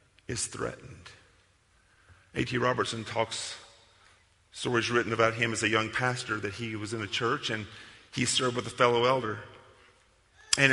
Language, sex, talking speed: English, male, 150 wpm